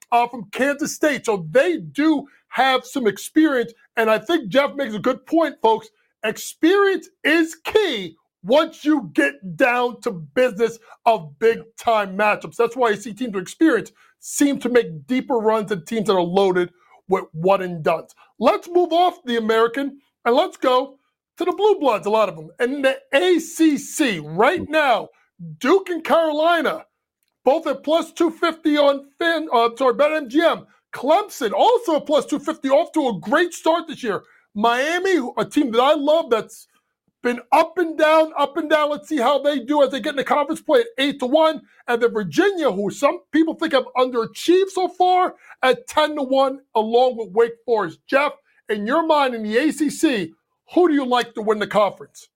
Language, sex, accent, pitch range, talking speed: English, male, American, 230-315 Hz, 190 wpm